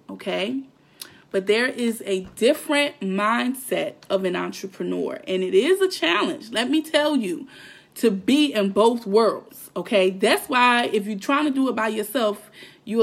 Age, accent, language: 20-39, American, English